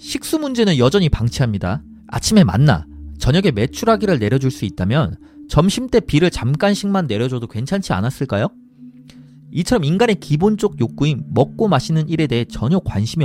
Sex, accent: male, native